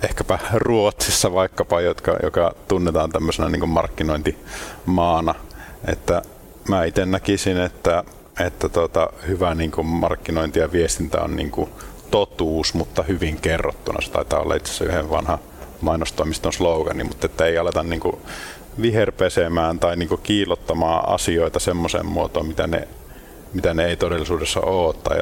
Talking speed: 130 wpm